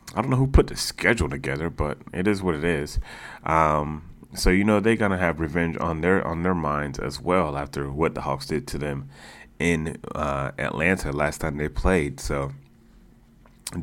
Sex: male